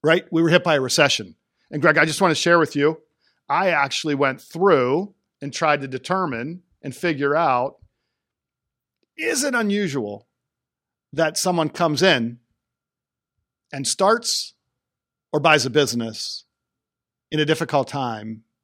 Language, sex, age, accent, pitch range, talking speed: English, male, 50-69, American, 125-170 Hz, 140 wpm